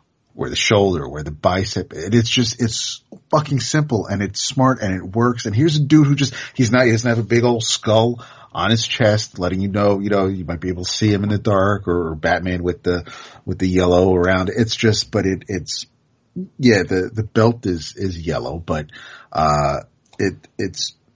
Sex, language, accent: male, English, American